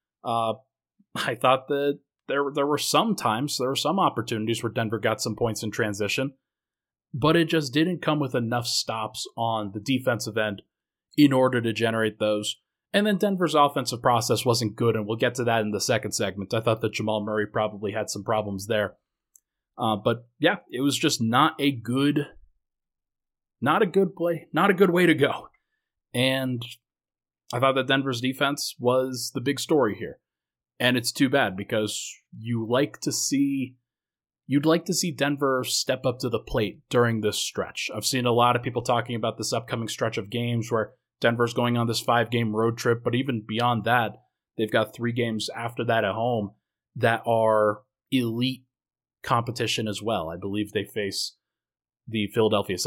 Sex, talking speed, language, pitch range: male, 180 wpm, English, 110-135 Hz